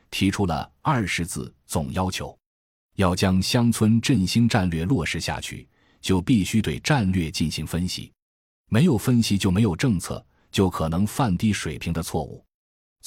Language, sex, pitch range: Chinese, male, 80-110 Hz